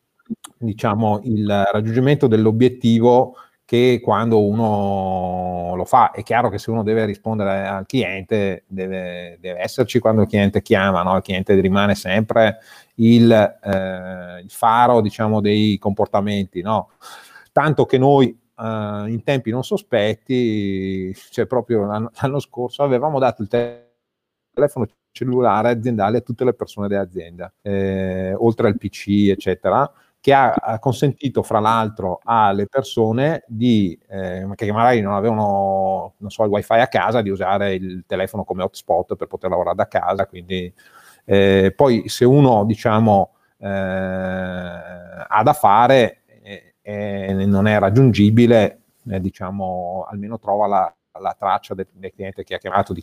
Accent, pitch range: native, 95-115 Hz